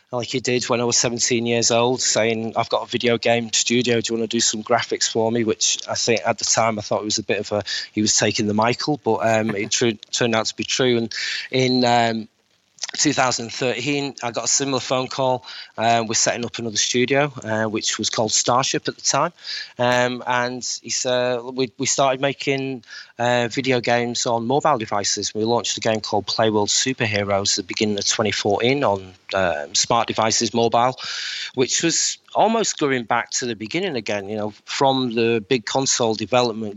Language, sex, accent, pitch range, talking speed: English, male, British, 110-125 Hz, 205 wpm